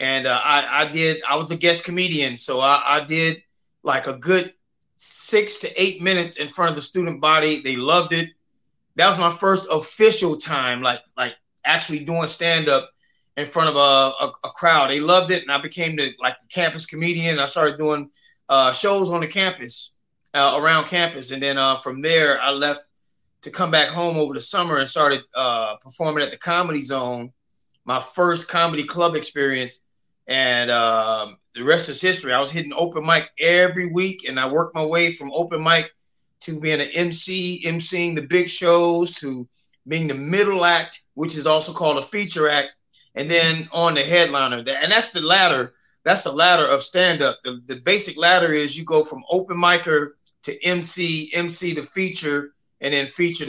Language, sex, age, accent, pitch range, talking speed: English, male, 30-49, American, 140-170 Hz, 190 wpm